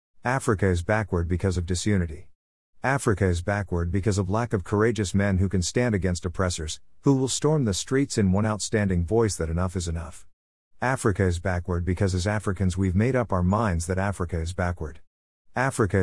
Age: 50-69